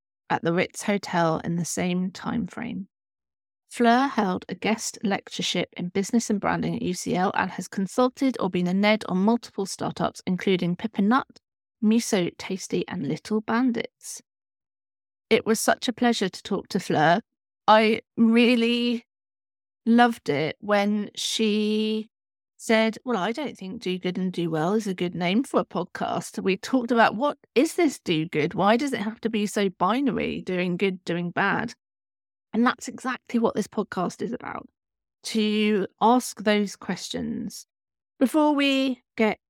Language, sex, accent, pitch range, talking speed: English, female, British, 185-235 Hz, 160 wpm